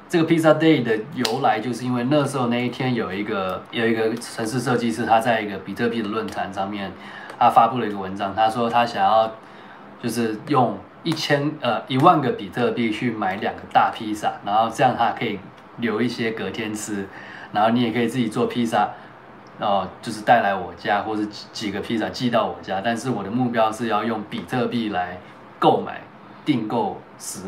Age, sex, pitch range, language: 20-39, male, 110-125 Hz, Chinese